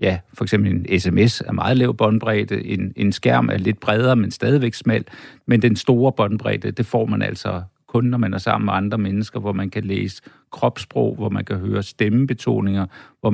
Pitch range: 100-120 Hz